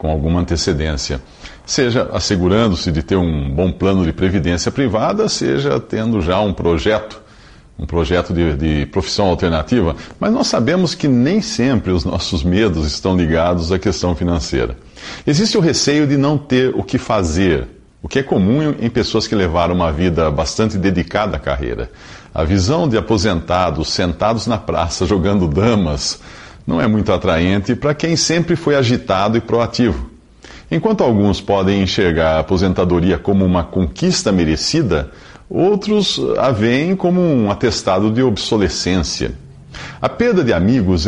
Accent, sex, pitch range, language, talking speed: Brazilian, male, 90-125 Hz, Portuguese, 150 wpm